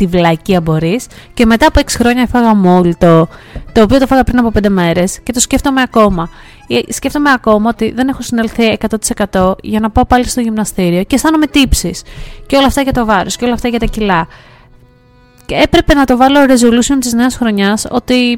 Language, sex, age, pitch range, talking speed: Greek, female, 20-39, 185-240 Hz, 200 wpm